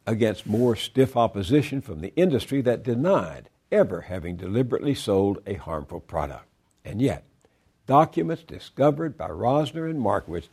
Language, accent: English, American